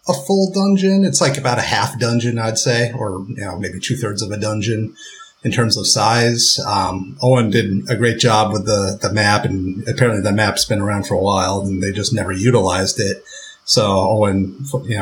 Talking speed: 210 wpm